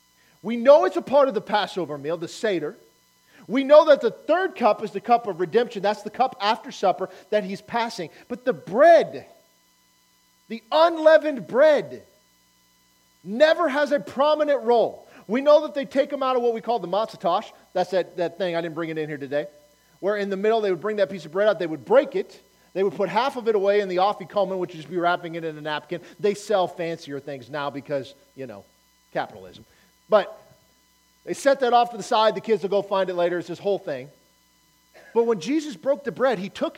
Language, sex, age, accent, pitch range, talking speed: English, male, 40-59, American, 165-265 Hz, 220 wpm